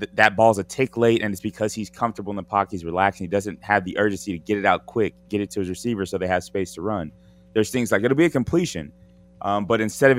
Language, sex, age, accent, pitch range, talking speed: English, male, 20-39, American, 90-110 Hz, 275 wpm